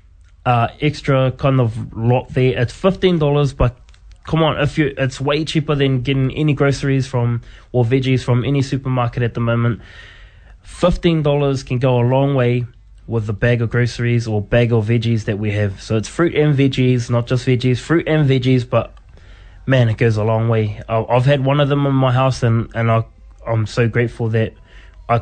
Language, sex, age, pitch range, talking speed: English, male, 20-39, 115-140 Hz, 195 wpm